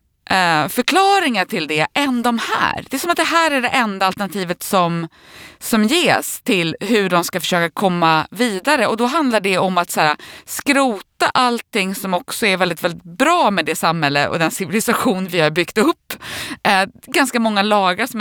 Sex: female